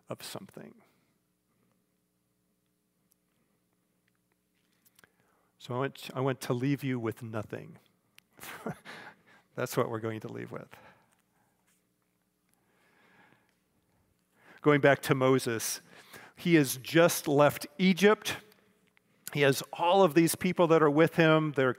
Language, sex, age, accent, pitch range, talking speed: English, male, 50-69, American, 115-165 Hz, 100 wpm